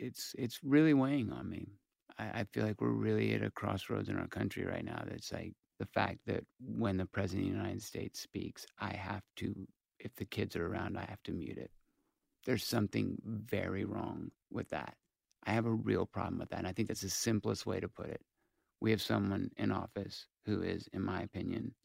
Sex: male